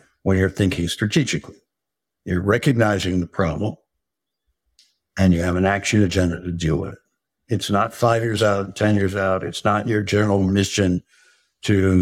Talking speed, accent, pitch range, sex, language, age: 160 wpm, American, 90-105 Hz, male, English, 60-79